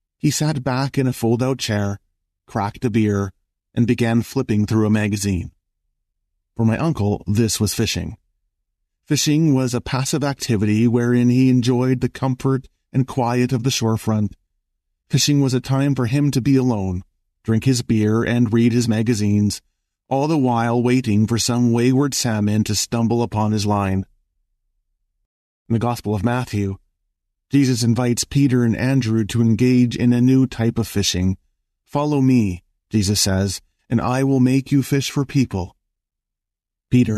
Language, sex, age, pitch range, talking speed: English, male, 40-59, 95-125 Hz, 155 wpm